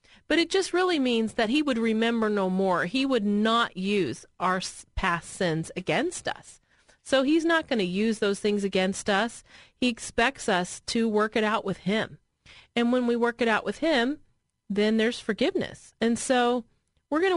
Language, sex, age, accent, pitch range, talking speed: English, female, 30-49, American, 190-245 Hz, 185 wpm